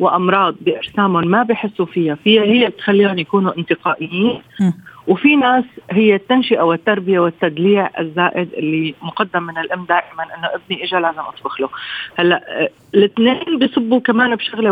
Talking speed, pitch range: 135 wpm, 170-220 Hz